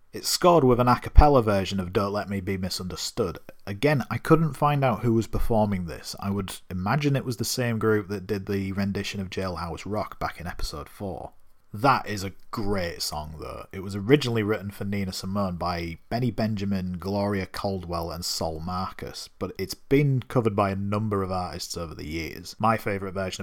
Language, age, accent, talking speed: English, 30-49, British, 195 wpm